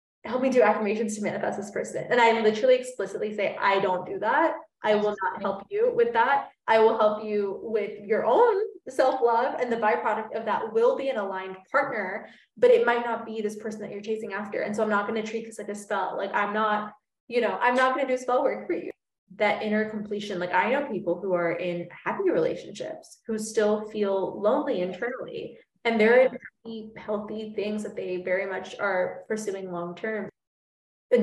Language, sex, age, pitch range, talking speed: English, female, 20-39, 190-230 Hz, 210 wpm